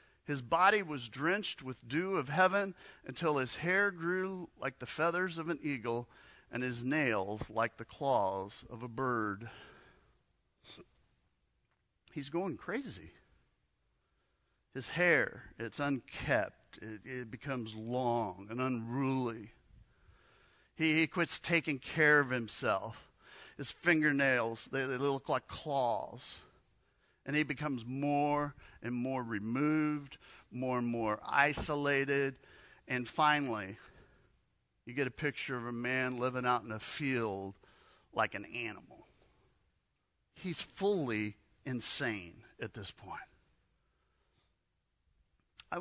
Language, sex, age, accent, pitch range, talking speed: English, male, 50-69, American, 120-150 Hz, 115 wpm